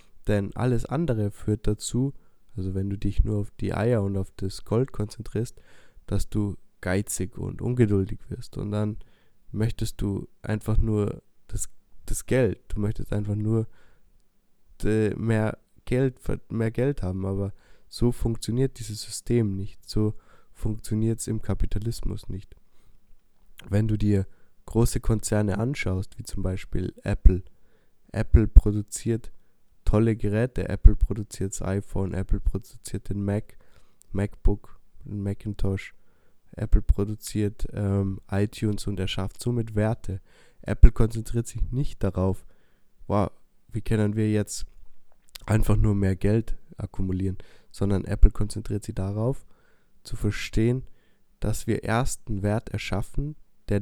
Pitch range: 100-110 Hz